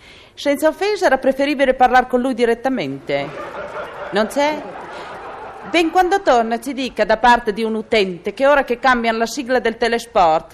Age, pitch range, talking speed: 40-59, 220-320 Hz, 160 wpm